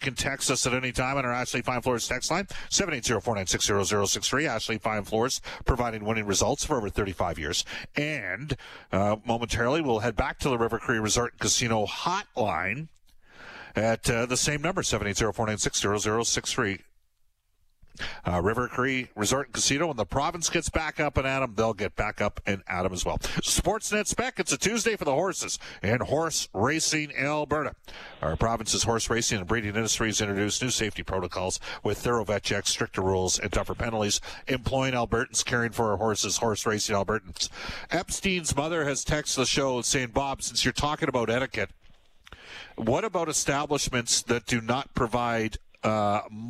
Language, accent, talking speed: English, American, 190 wpm